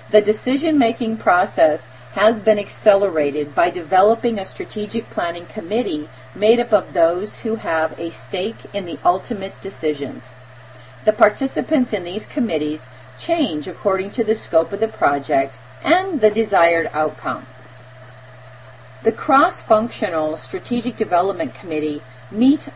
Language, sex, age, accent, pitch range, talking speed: English, female, 40-59, American, 150-225 Hz, 125 wpm